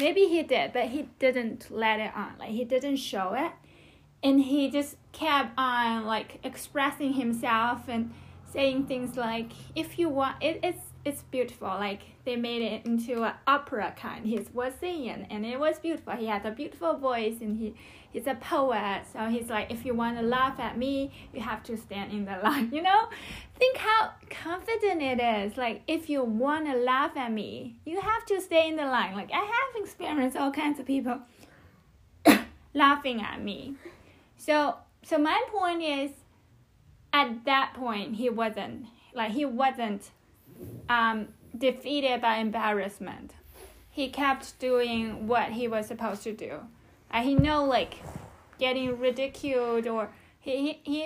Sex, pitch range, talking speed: female, 220-275 Hz, 165 wpm